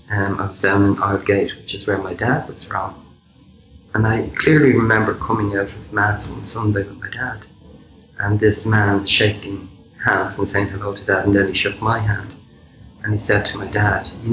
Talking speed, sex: 210 wpm, male